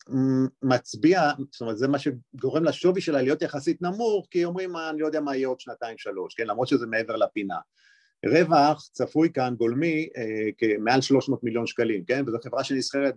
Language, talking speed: Hebrew, 170 wpm